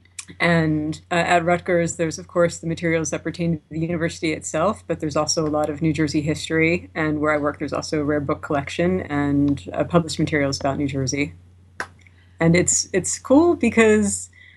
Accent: American